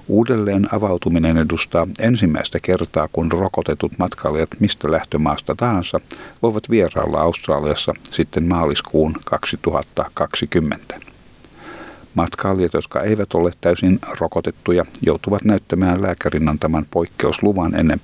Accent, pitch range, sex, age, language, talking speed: native, 85-105 Hz, male, 50-69, Finnish, 95 wpm